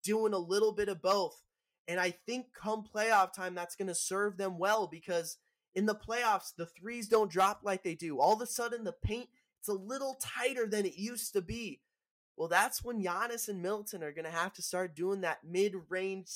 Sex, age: male, 20-39